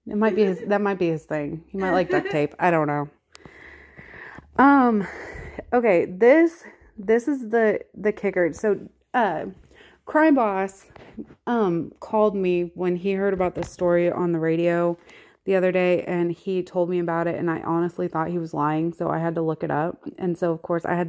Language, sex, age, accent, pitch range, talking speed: English, female, 30-49, American, 170-210 Hz, 195 wpm